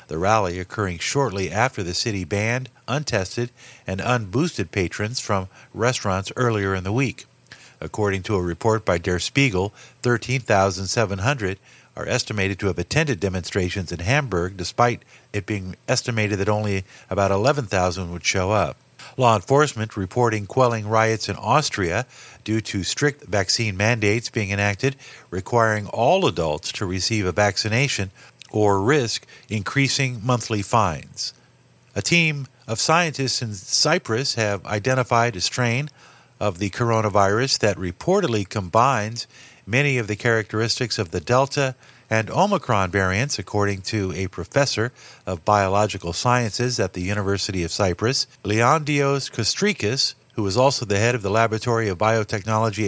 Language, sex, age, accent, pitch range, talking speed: English, male, 50-69, American, 100-125 Hz, 135 wpm